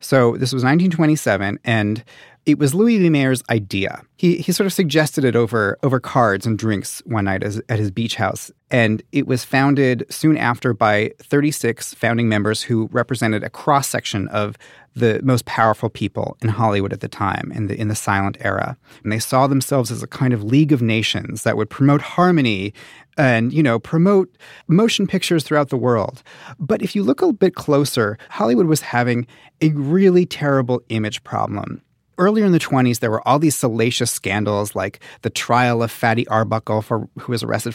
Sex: male